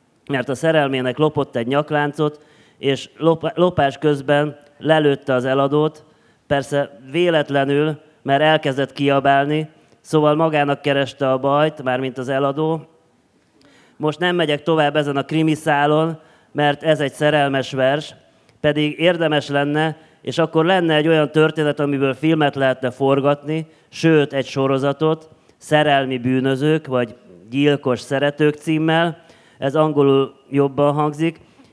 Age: 30-49